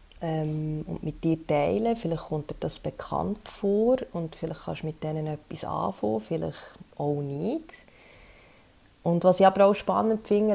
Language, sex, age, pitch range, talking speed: German, female, 30-49, 155-195 Hz, 160 wpm